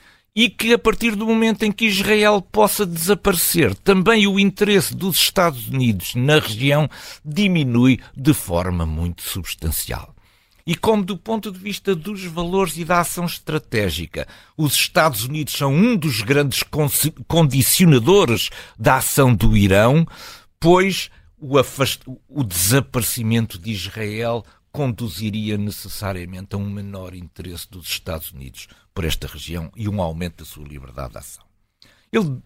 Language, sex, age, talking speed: Portuguese, male, 60-79, 140 wpm